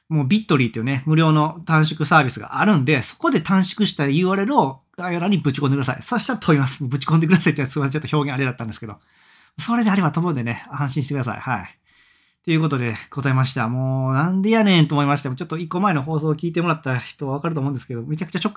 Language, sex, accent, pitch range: Japanese, male, native, 130-180 Hz